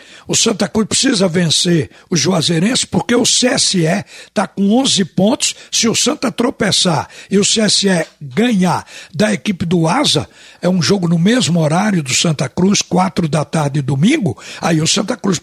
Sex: male